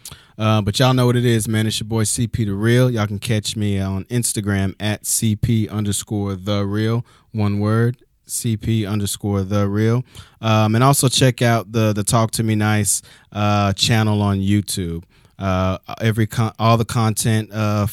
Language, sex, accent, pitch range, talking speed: English, male, American, 100-115 Hz, 175 wpm